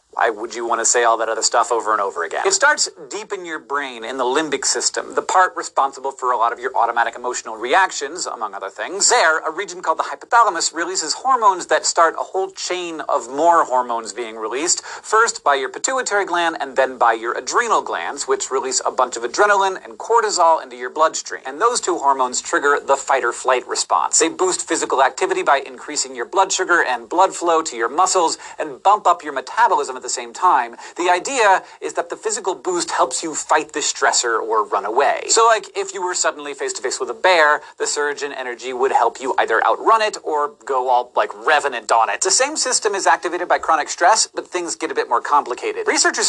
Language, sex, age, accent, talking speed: English, male, 40-59, American, 220 wpm